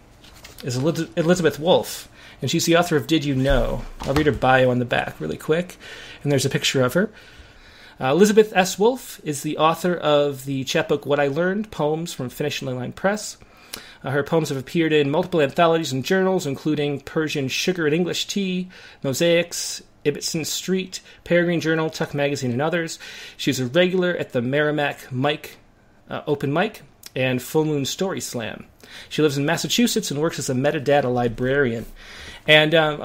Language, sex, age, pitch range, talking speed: English, male, 30-49, 135-170 Hz, 175 wpm